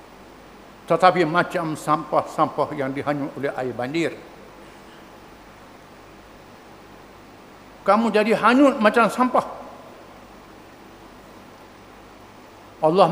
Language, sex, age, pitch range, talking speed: English, male, 60-79, 155-205 Hz, 65 wpm